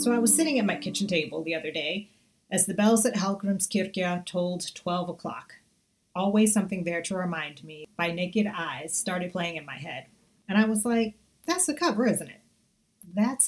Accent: American